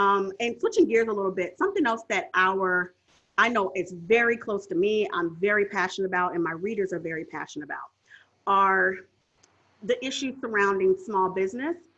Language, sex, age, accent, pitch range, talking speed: English, female, 30-49, American, 190-260 Hz, 175 wpm